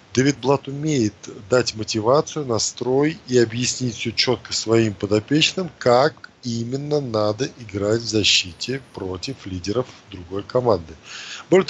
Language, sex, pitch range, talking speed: Russian, male, 110-140 Hz, 120 wpm